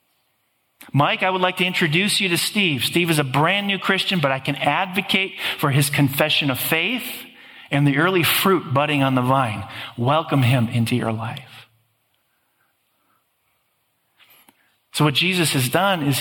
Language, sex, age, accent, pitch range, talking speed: English, male, 40-59, American, 135-190 Hz, 160 wpm